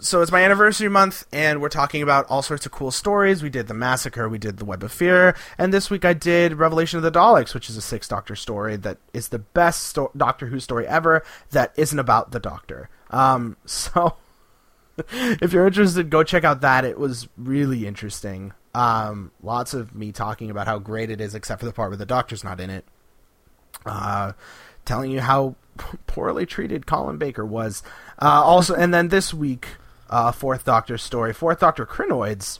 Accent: American